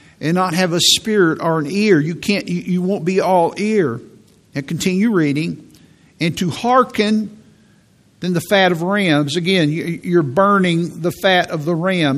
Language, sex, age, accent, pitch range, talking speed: English, male, 50-69, American, 155-195 Hz, 170 wpm